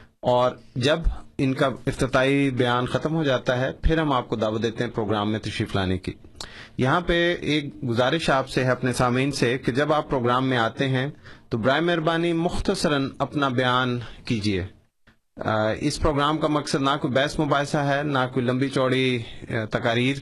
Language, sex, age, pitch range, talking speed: Urdu, male, 30-49, 120-140 Hz, 180 wpm